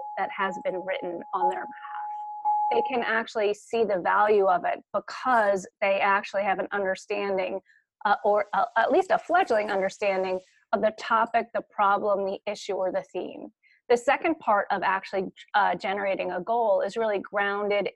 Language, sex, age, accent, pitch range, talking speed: English, female, 30-49, American, 195-250 Hz, 165 wpm